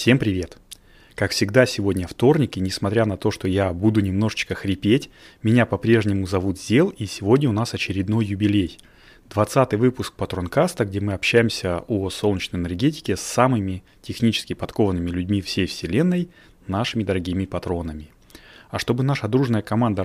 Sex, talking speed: male, 145 wpm